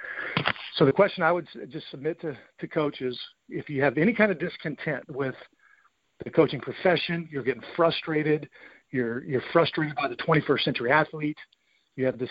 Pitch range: 130-155 Hz